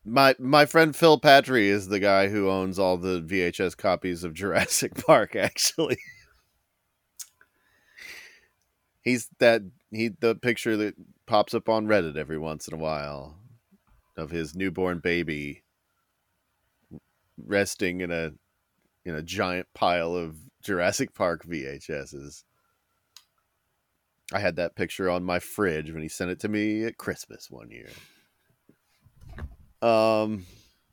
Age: 30-49